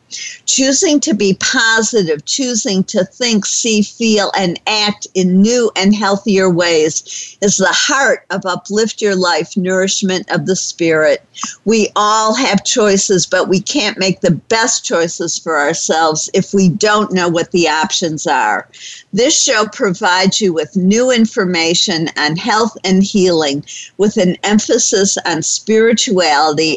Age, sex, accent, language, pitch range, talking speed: 50-69, female, American, English, 175-220 Hz, 145 wpm